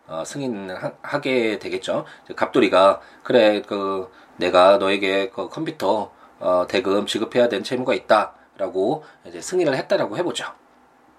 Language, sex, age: Korean, male, 20-39